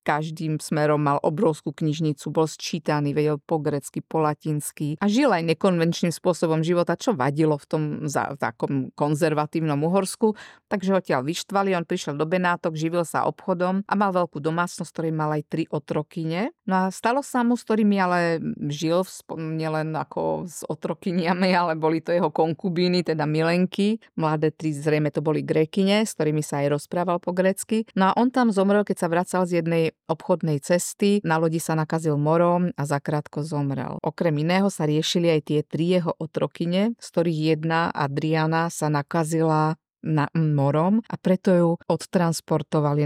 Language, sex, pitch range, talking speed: Slovak, female, 155-180 Hz, 165 wpm